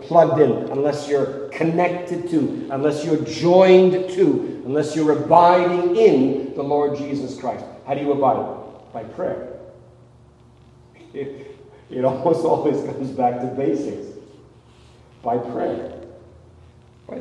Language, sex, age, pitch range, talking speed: English, male, 40-59, 120-145 Hz, 120 wpm